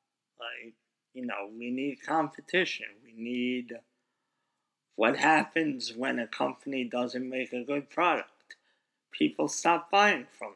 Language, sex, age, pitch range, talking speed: English, male, 50-69, 115-150 Hz, 125 wpm